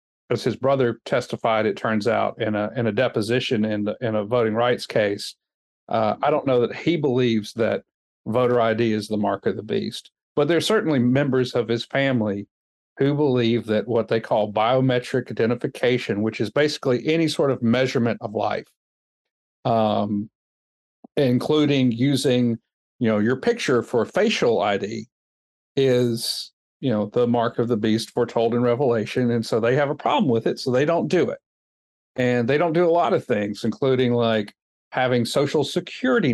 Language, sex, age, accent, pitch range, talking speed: English, male, 50-69, American, 110-135 Hz, 175 wpm